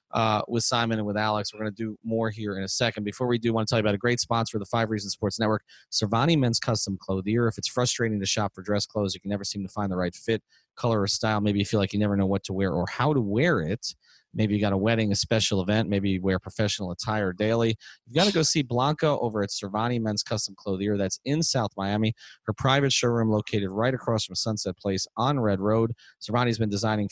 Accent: American